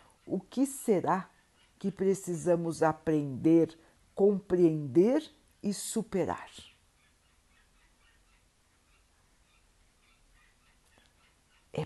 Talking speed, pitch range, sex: 50 wpm, 115-180 Hz, female